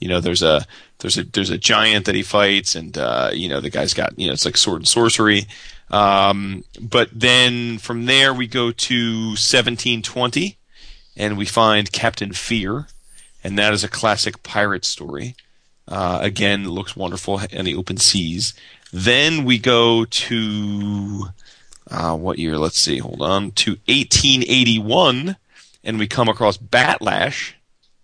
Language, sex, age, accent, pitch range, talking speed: English, male, 30-49, American, 95-115 Hz, 165 wpm